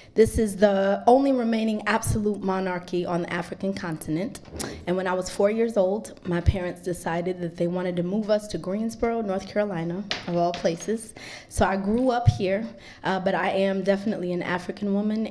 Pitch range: 175-210 Hz